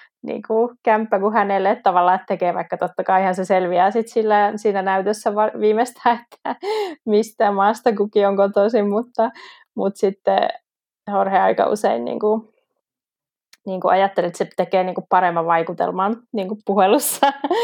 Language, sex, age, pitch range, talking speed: Finnish, female, 20-39, 185-225 Hz, 145 wpm